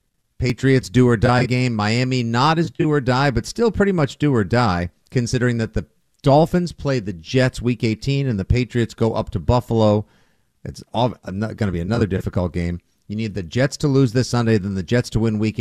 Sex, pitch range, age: male, 105-140 Hz, 50-69